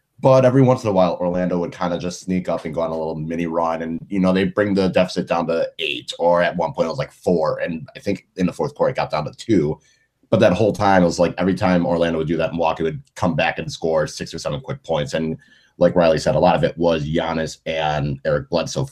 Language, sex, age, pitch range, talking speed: English, male, 30-49, 80-105 Hz, 280 wpm